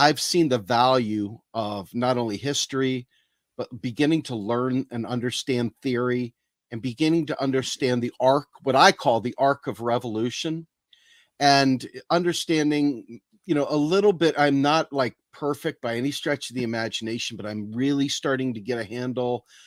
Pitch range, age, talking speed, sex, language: 115-145 Hz, 40-59, 160 wpm, male, English